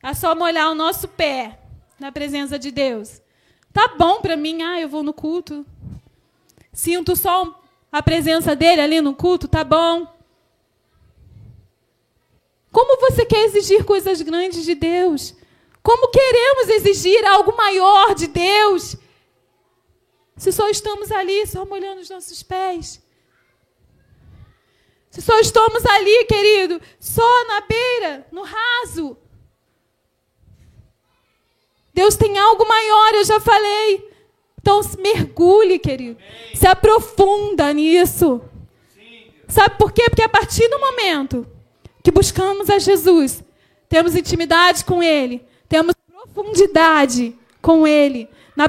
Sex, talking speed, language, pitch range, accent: female, 120 wpm, Portuguese, 320-415 Hz, Brazilian